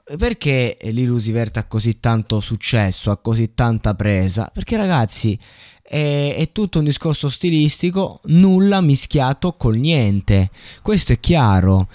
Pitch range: 105-140 Hz